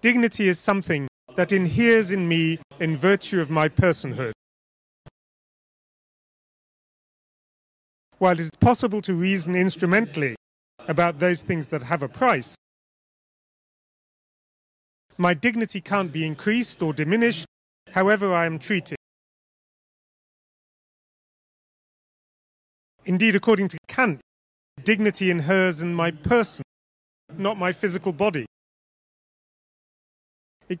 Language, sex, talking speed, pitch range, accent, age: Italian, male, 100 wpm, 155-200 Hz, British, 30-49